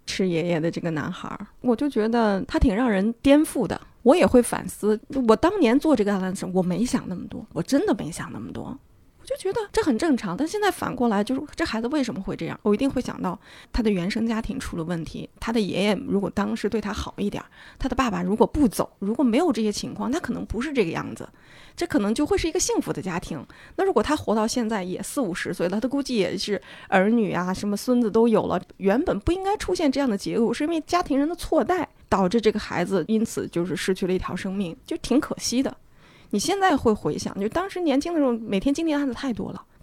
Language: Chinese